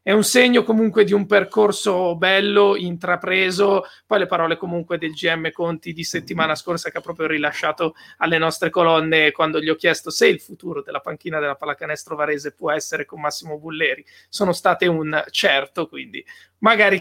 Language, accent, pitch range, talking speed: Italian, native, 165-205 Hz, 175 wpm